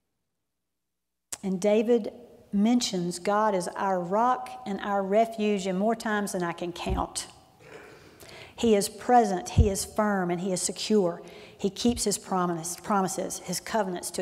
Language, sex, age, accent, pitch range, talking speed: English, female, 40-59, American, 195-230 Hz, 150 wpm